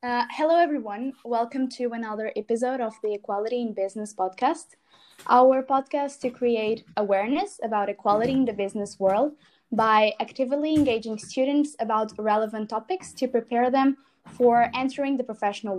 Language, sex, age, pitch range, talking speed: English, female, 10-29, 210-265 Hz, 145 wpm